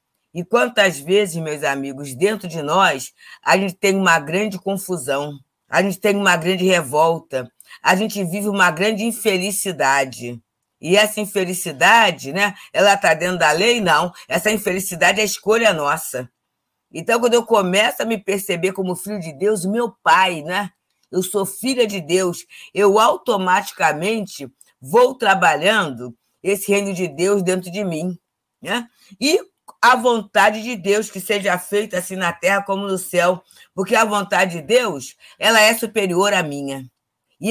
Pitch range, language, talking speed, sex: 165-215 Hz, Portuguese, 155 wpm, female